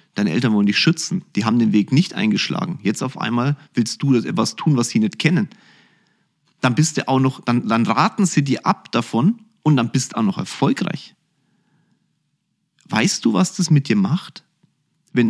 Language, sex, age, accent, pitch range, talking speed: German, male, 40-59, German, 135-185 Hz, 175 wpm